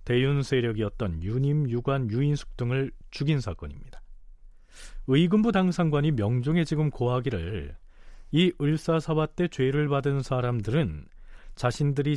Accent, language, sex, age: native, Korean, male, 40-59